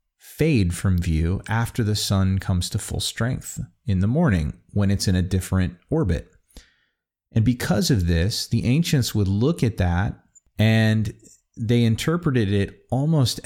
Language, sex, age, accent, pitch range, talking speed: English, male, 30-49, American, 95-115 Hz, 150 wpm